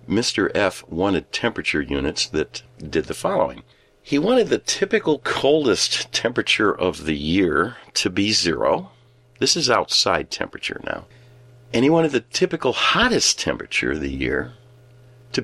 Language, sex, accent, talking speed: English, male, American, 145 wpm